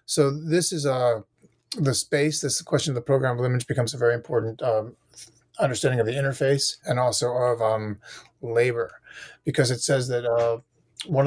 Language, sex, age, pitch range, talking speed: English, male, 30-49, 120-140 Hz, 180 wpm